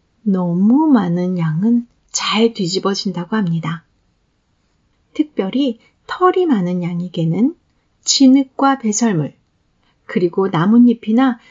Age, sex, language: 40-59, female, Korean